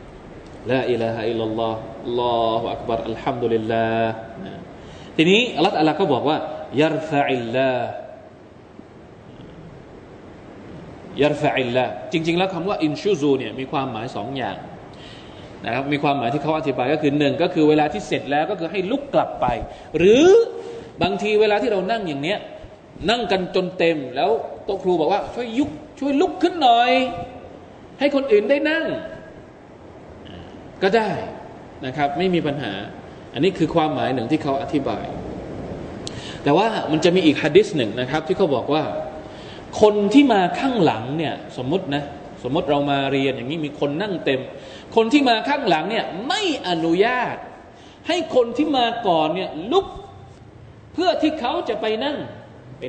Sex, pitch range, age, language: male, 140-230 Hz, 20-39, Thai